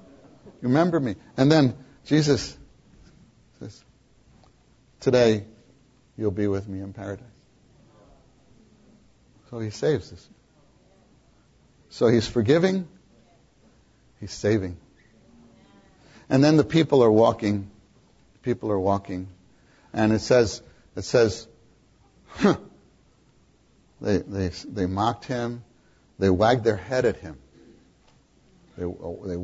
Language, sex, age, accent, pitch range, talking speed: English, male, 50-69, American, 95-125 Hz, 100 wpm